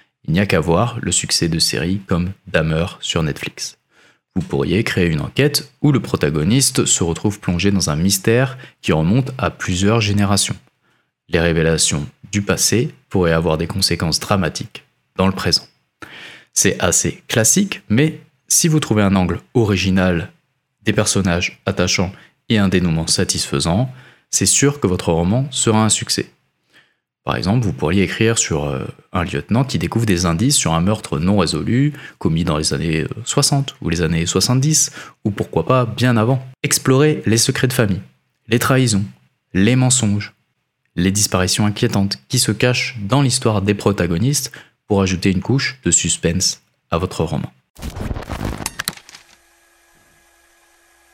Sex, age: male, 20-39